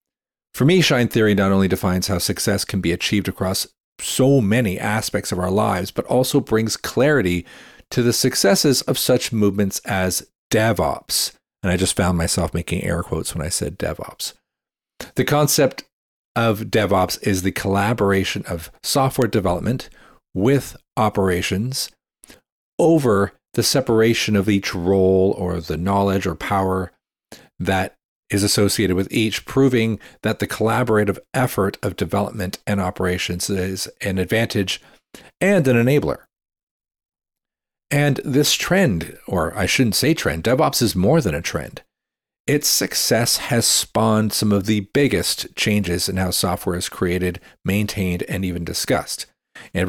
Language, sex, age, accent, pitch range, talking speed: English, male, 40-59, American, 95-120 Hz, 145 wpm